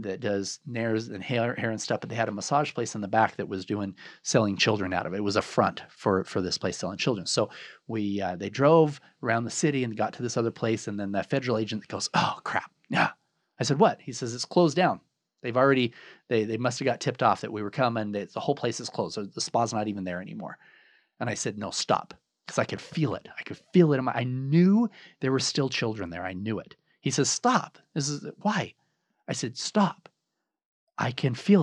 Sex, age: male, 30-49